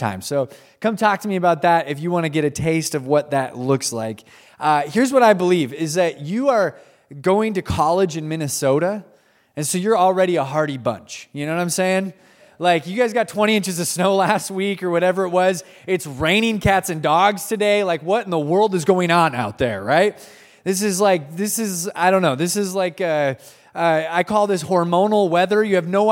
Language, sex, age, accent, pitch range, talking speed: English, male, 20-39, American, 165-215 Hz, 225 wpm